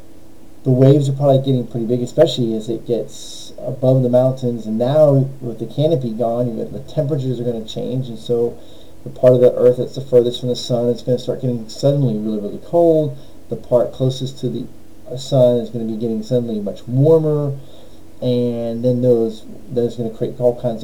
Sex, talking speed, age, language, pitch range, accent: male, 215 wpm, 30-49, English, 115-135 Hz, American